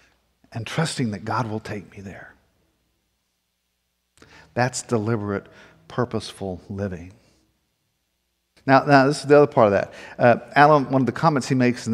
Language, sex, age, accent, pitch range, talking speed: English, male, 50-69, American, 110-135 Hz, 150 wpm